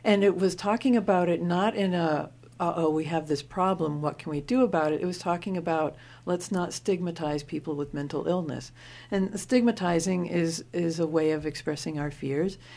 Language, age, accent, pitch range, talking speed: English, 60-79, American, 145-180 Hz, 195 wpm